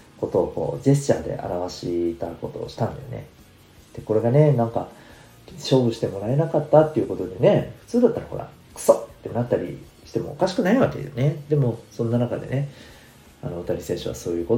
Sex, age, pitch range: male, 40-59, 95-145 Hz